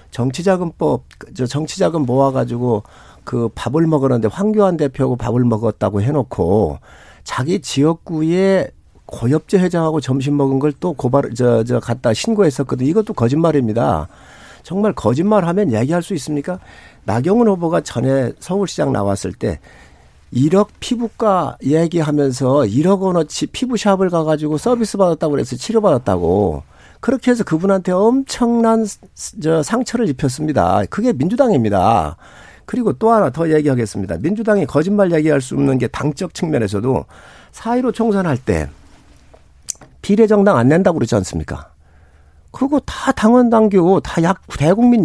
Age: 50-69